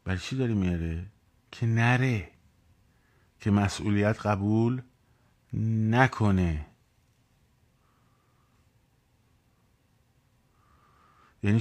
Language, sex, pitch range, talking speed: Persian, male, 95-120 Hz, 55 wpm